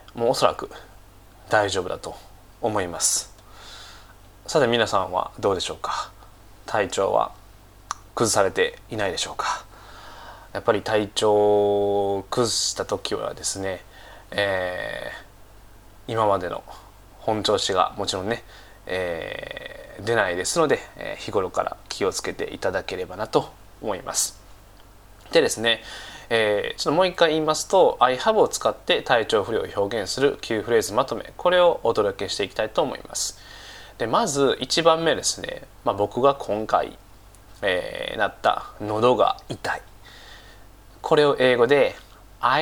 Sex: male